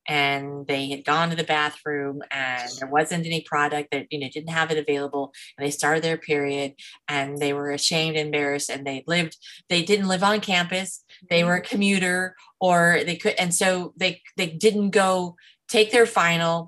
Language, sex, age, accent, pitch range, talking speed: English, female, 30-49, American, 160-200 Hz, 190 wpm